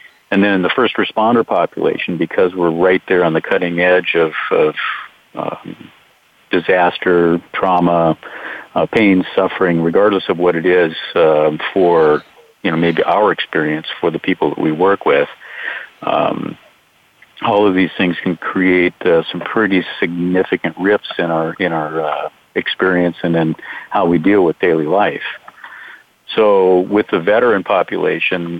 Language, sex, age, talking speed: English, male, 50-69, 155 wpm